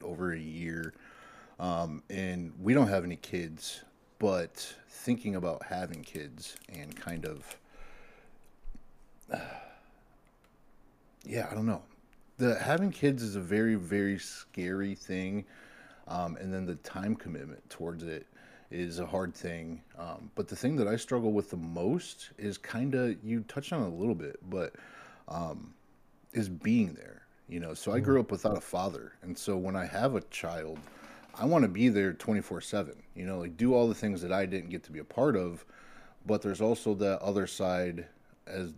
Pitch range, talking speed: 85-110 Hz, 180 wpm